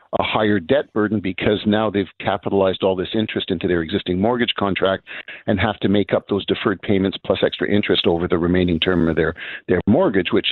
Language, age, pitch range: English, 50-69, 90-105 Hz